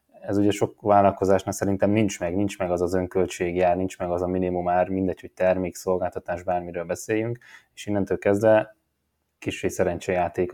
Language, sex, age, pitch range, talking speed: Hungarian, male, 20-39, 90-100 Hz, 160 wpm